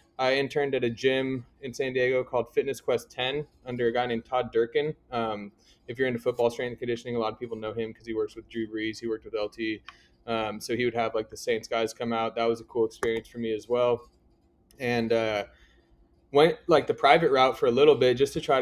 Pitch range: 115-140 Hz